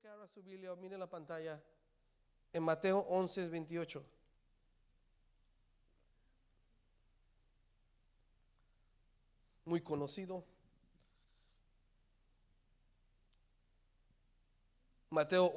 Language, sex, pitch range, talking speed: Spanish, male, 105-160 Hz, 40 wpm